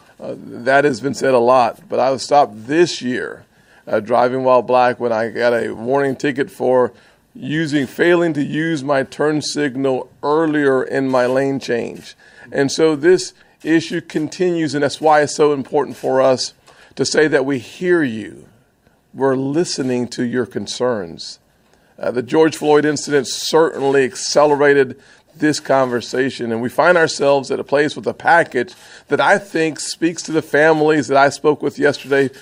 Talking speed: 170 wpm